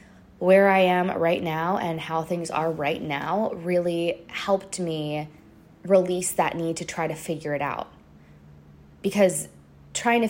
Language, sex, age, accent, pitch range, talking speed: English, female, 20-39, American, 160-195 Hz, 150 wpm